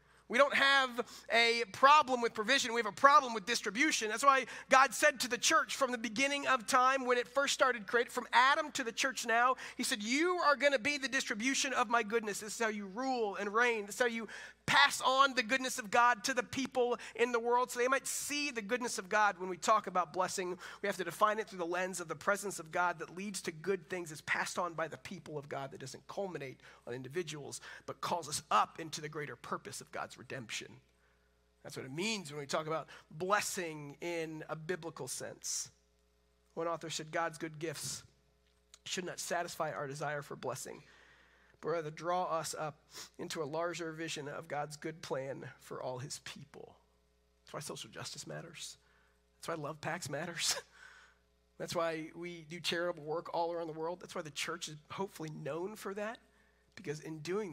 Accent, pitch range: American, 155-240 Hz